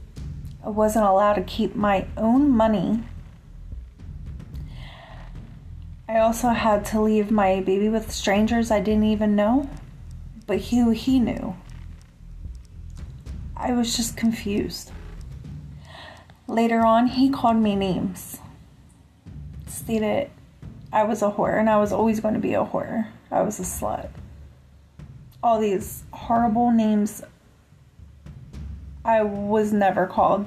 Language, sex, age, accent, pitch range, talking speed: English, female, 30-49, American, 180-230 Hz, 125 wpm